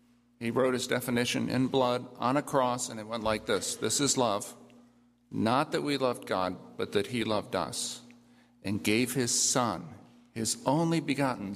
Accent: American